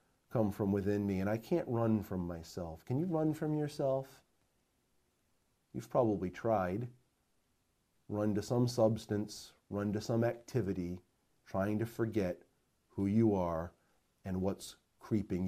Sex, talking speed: male, 135 wpm